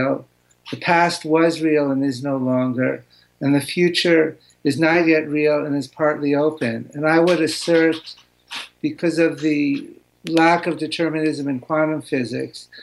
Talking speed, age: 150 wpm, 60-79